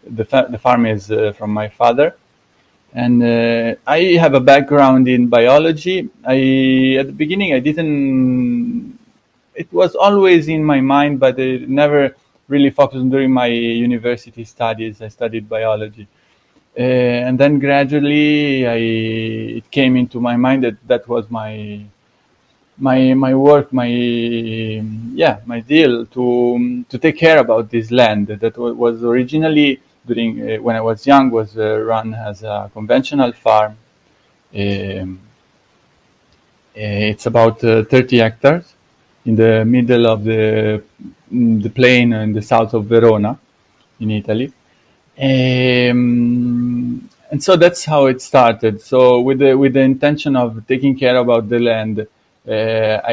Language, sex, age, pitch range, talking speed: English, male, 20-39, 110-135 Hz, 140 wpm